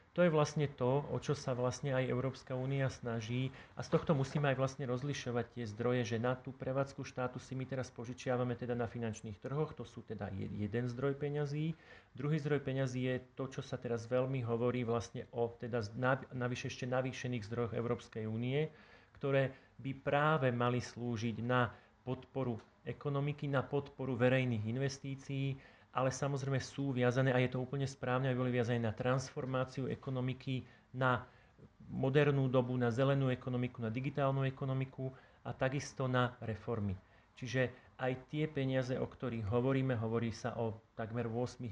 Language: Slovak